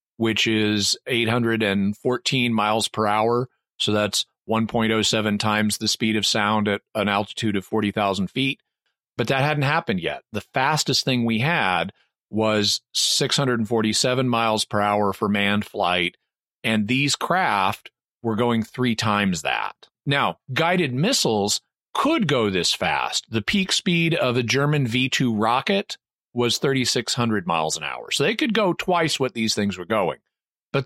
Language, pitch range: English, 110-140 Hz